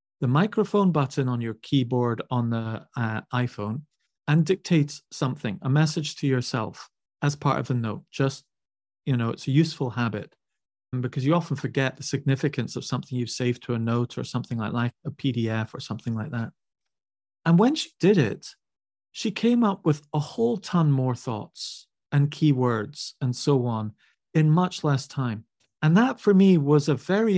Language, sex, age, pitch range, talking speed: English, male, 40-59, 125-160 Hz, 180 wpm